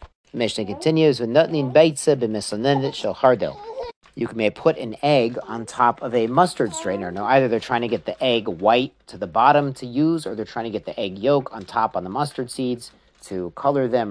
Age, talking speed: 40-59, 195 wpm